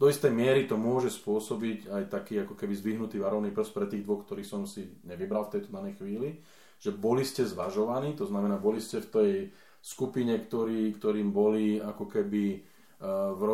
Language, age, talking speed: Slovak, 30-49, 180 wpm